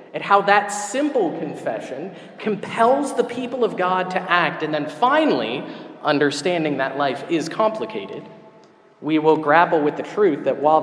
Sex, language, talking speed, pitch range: male, English, 155 wpm, 155-215 Hz